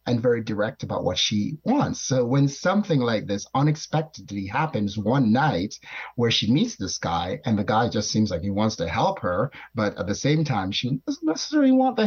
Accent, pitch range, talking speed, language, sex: American, 110-170 Hz, 210 wpm, English, male